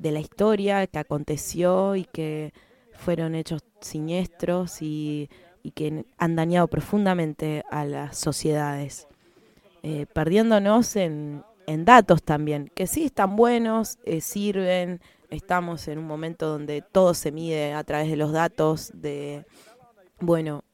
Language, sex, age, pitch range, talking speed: English, female, 20-39, 150-185 Hz, 135 wpm